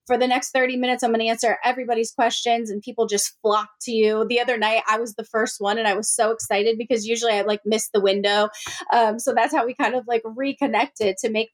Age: 20-39